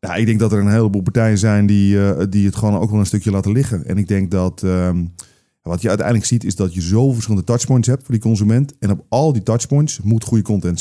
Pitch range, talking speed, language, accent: 95-120 Hz, 250 wpm, Dutch, Dutch